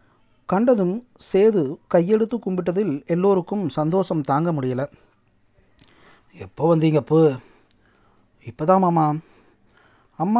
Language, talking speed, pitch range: Tamil, 80 wpm, 140-185 Hz